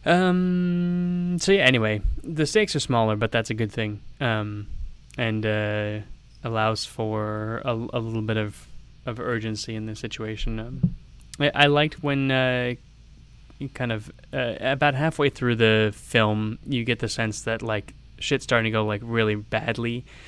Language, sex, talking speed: English, male, 165 wpm